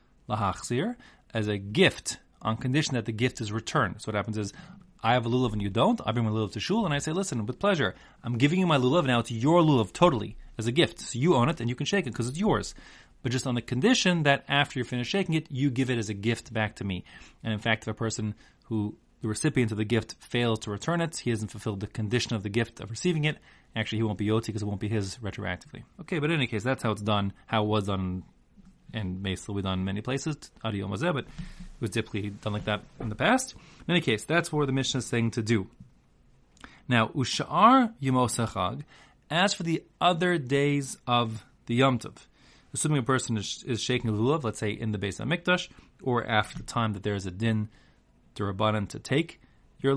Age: 30-49